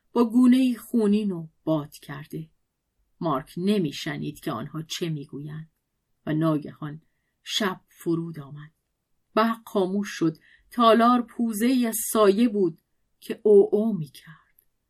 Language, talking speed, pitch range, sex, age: Persian, 120 wpm, 160-215 Hz, female, 40-59